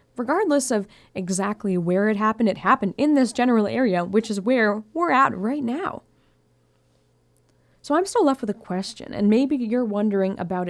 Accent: American